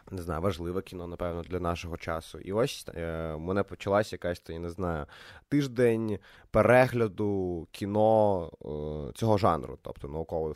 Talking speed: 150 wpm